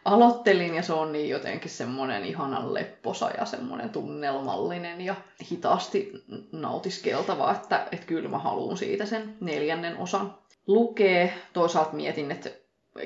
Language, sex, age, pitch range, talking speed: English, female, 20-39, 155-205 Hz, 130 wpm